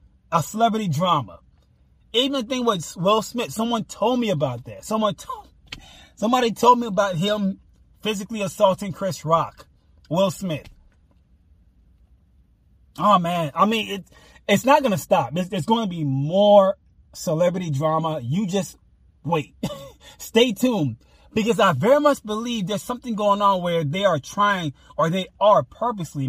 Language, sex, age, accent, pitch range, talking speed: English, male, 20-39, American, 150-220 Hz, 155 wpm